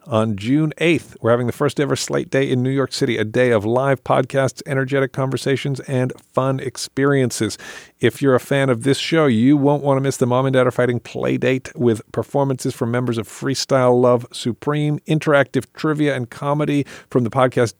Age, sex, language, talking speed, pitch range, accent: 50-69, male, English, 195 wpm, 110-135 Hz, American